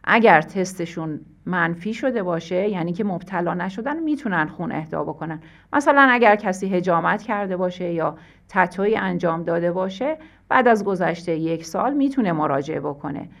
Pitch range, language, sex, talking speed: 165-215 Hz, Persian, female, 145 wpm